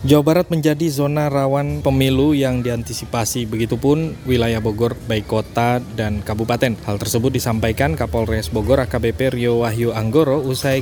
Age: 20-39